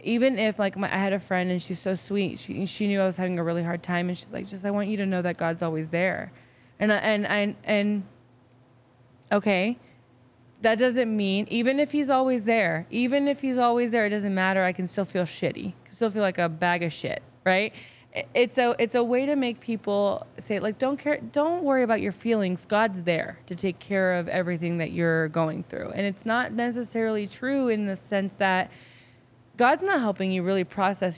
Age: 20-39